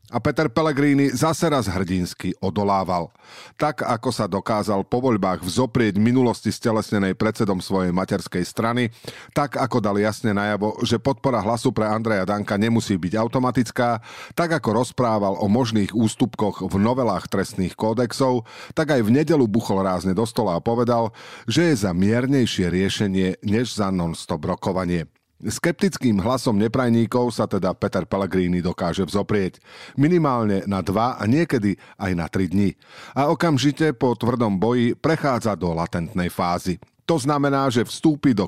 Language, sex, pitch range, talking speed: Slovak, male, 95-130 Hz, 150 wpm